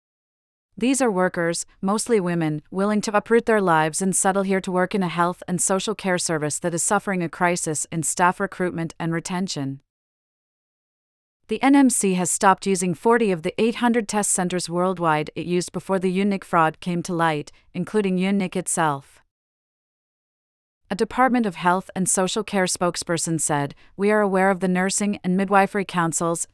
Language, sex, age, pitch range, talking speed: English, female, 40-59, 165-200 Hz, 165 wpm